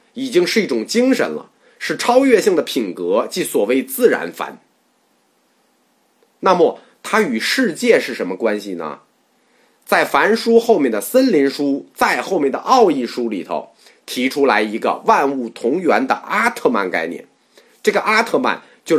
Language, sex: Chinese, male